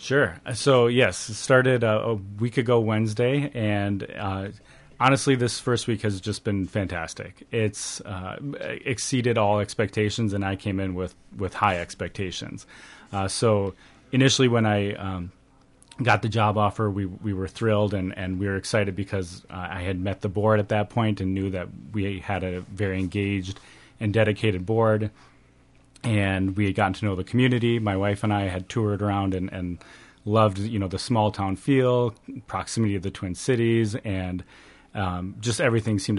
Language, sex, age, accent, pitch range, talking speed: English, male, 30-49, American, 95-115 Hz, 175 wpm